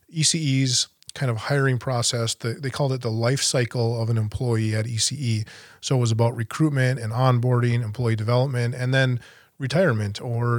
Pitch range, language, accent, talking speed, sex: 115-130 Hz, English, American, 165 wpm, male